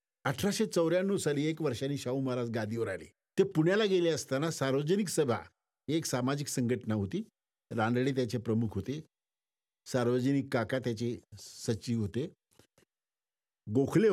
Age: 50-69